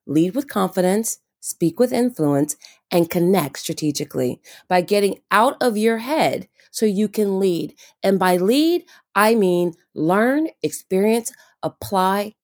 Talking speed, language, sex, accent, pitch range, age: 130 wpm, English, female, American, 165-225 Hz, 30-49